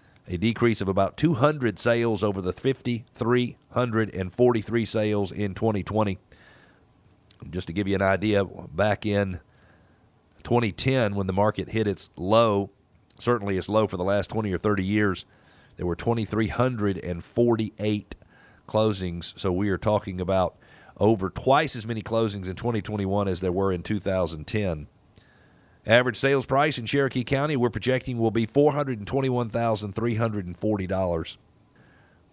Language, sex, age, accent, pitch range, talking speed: English, male, 40-59, American, 95-120 Hz, 130 wpm